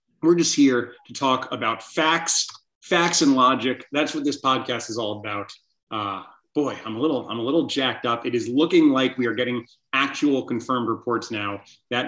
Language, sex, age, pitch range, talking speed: English, male, 30-49, 120-150 Hz, 195 wpm